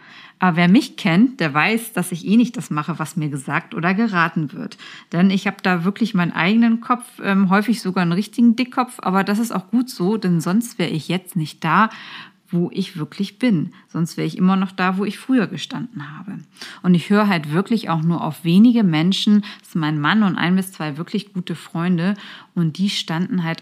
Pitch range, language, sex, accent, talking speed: 170-210 Hz, German, female, German, 215 wpm